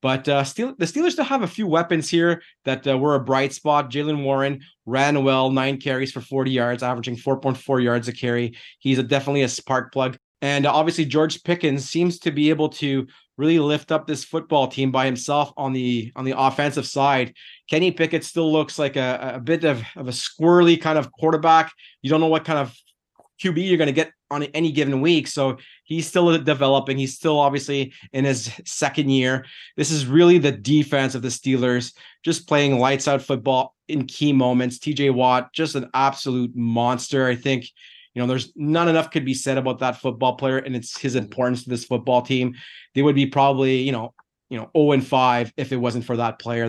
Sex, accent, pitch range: male, American, 130-155 Hz